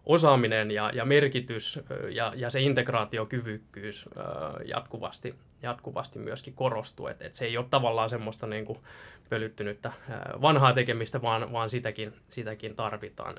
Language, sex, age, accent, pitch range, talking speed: Finnish, male, 20-39, native, 110-125 Hz, 125 wpm